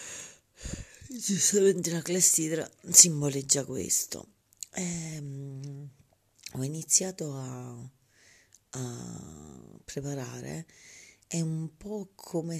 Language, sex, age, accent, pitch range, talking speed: Italian, female, 30-49, native, 120-160 Hz, 65 wpm